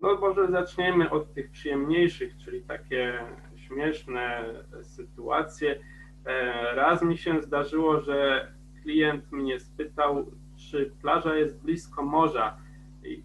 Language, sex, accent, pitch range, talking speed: Polish, male, native, 130-155 Hz, 110 wpm